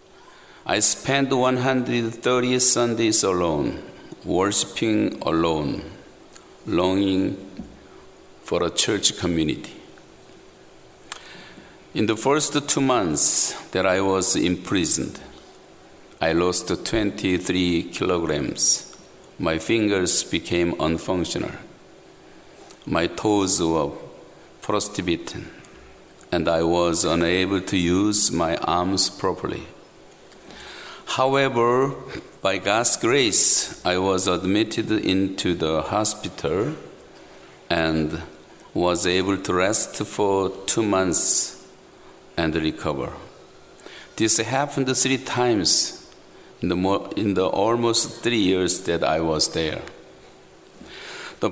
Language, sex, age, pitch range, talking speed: English, male, 60-79, 85-115 Hz, 90 wpm